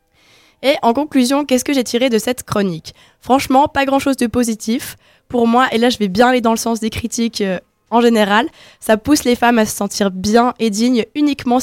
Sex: female